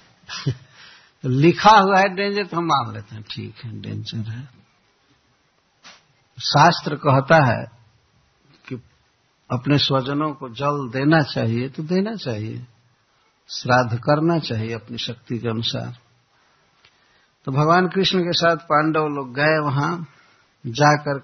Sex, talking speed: male, 120 wpm